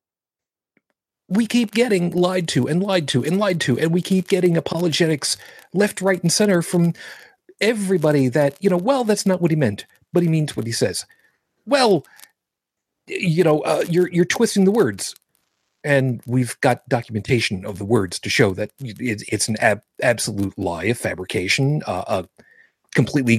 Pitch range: 125-190 Hz